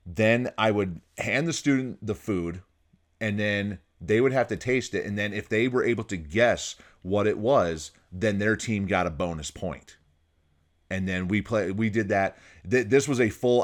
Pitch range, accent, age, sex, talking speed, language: 90-110 Hz, American, 30-49, male, 200 wpm, English